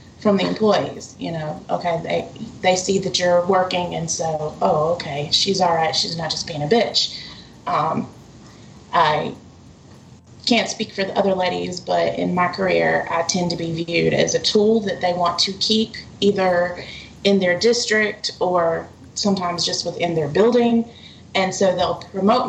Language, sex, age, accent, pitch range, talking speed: English, female, 20-39, American, 175-215 Hz, 170 wpm